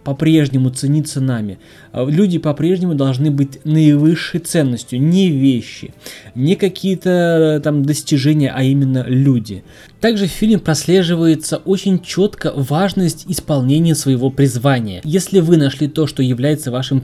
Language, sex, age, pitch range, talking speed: Russian, male, 20-39, 135-170 Hz, 125 wpm